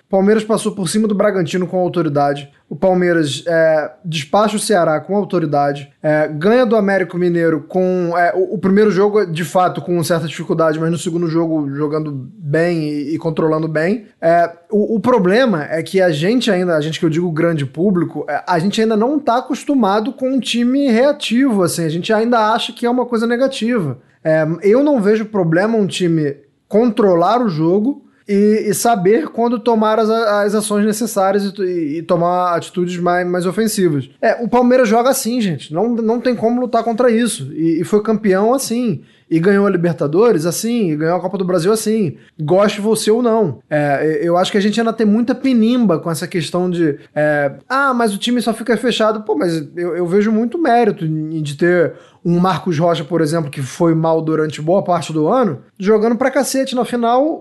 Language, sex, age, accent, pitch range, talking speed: Portuguese, male, 20-39, Brazilian, 170-230 Hz, 195 wpm